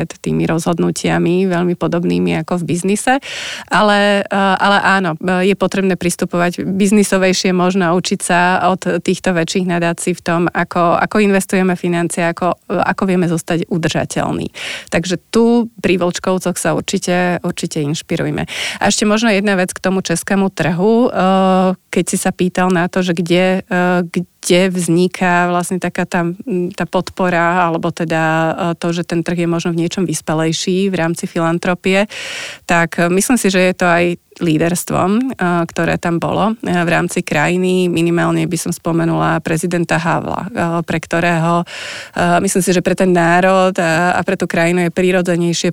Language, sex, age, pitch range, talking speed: Slovak, female, 30-49, 170-185 Hz, 150 wpm